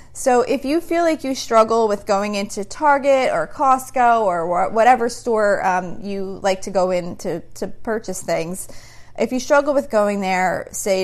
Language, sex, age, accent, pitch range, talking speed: English, female, 30-49, American, 185-230 Hz, 180 wpm